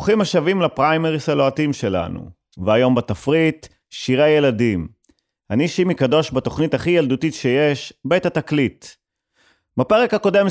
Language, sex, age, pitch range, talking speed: Hebrew, male, 30-49, 115-155 Hz, 115 wpm